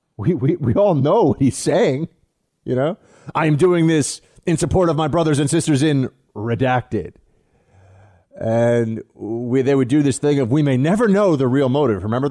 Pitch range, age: 115-160 Hz, 30-49